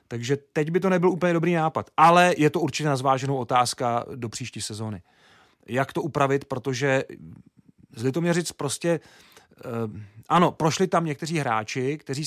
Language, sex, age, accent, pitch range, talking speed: Czech, male, 40-59, native, 125-155 Hz, 155 wpm